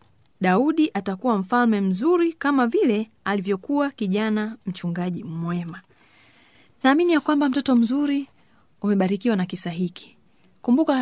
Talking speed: 105 wpm